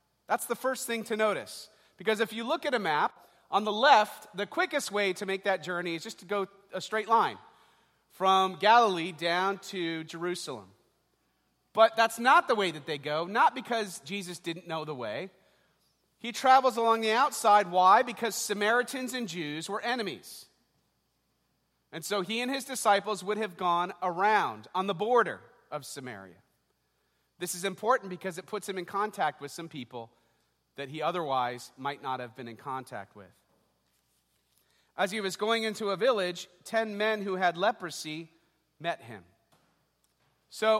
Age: 40-59